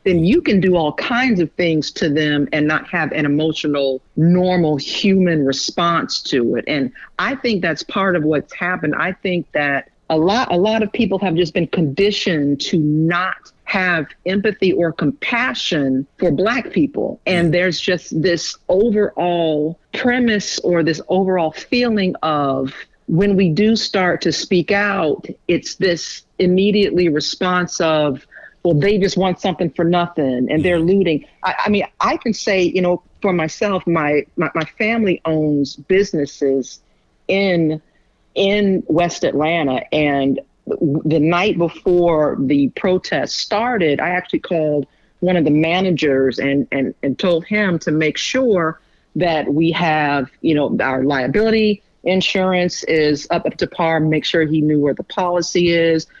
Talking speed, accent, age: 155 wpm, American, 50-69